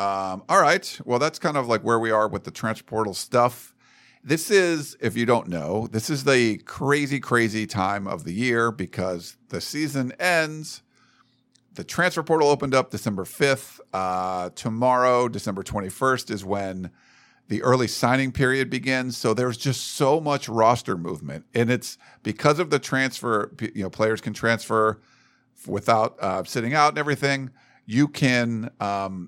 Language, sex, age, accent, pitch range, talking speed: English, male, 50-69, American, 110-145 Hz, 165 wpm